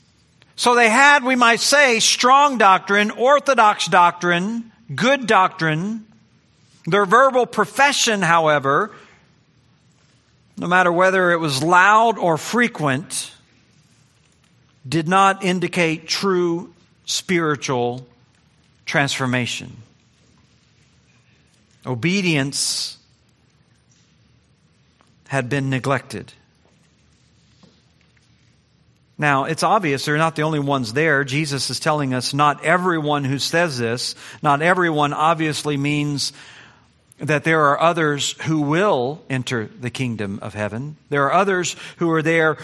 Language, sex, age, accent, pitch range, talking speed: English, male, 50-69, American, 140-200 Hz, 105 wpm